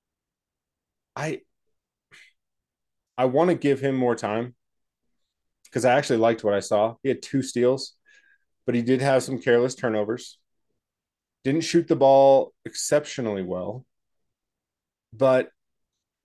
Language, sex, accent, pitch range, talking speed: English, male, American, 110-130 Hz, 120 wpm